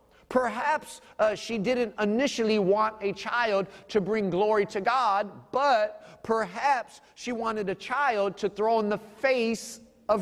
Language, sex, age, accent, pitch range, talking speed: English, male, 30-49, American, 155-230 Hz, 145 wpm